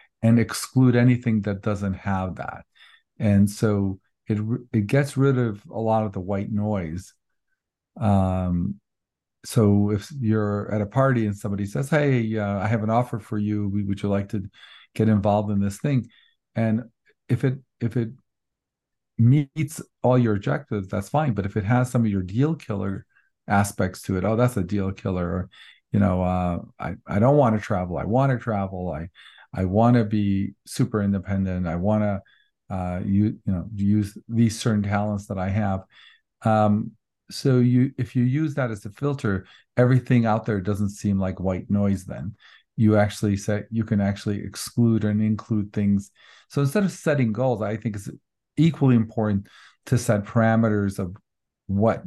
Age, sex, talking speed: 50-69, male, 175 wpm